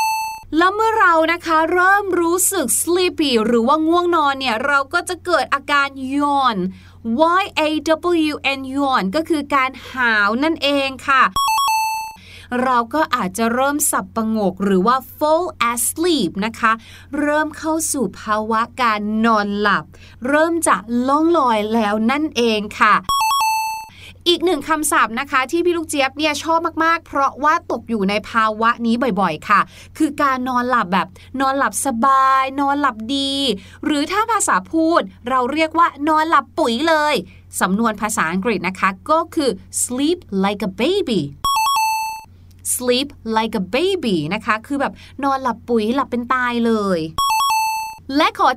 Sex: female